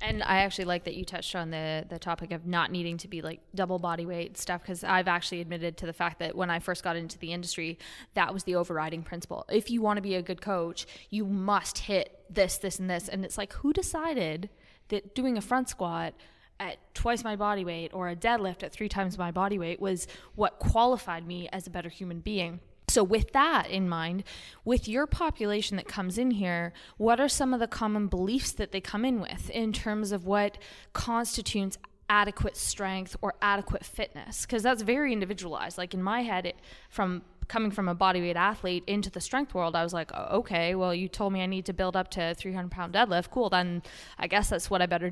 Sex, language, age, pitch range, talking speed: female, English, 20-39, 175-210 Hz, 225 wpm